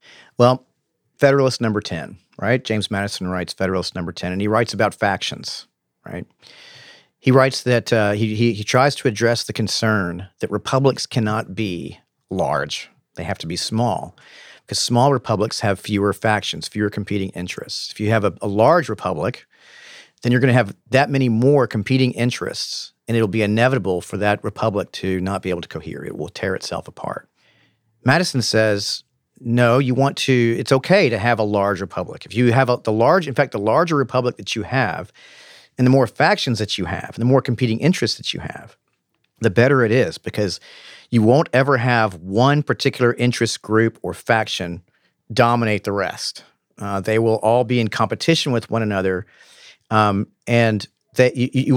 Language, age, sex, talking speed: English, 40-59, male, 185 wpm